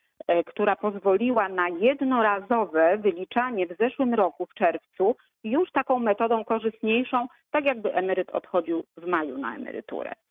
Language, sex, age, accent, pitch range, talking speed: Polish, female, 40-59, native, 180-220 Hz, 130 wpm